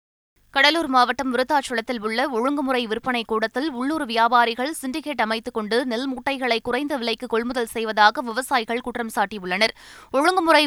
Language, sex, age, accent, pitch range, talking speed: Tamil, female, 20-39, native, 225-275 Hz, 125 wpm